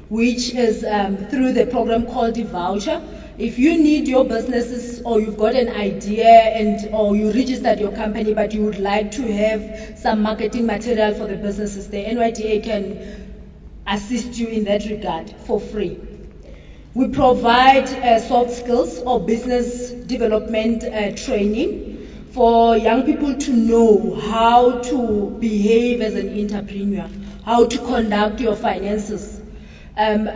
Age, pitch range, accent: 30-49, 200-235 Hz, South African